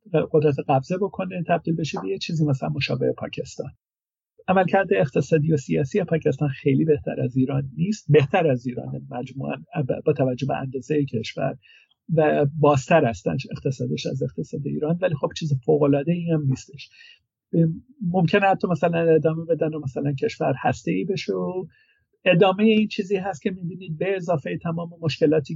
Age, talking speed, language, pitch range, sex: 50-69, 155 wpm, Persian, 145-175 Hz, male